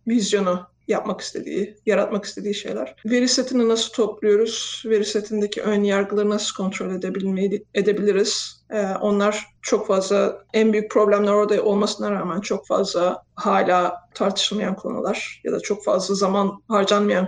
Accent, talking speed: native, 125 wpm